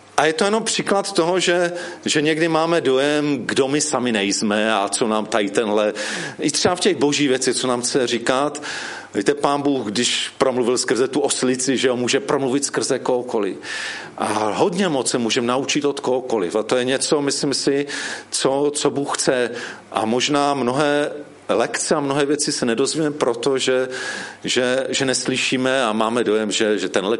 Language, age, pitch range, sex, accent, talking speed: Czech, 40-59, 120-175 Hz, male, native, 180 wpm